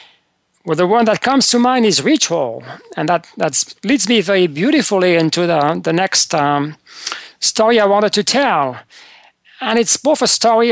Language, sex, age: English, male, 40-59